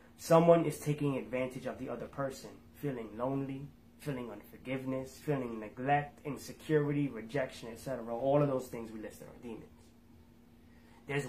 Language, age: English, 20-39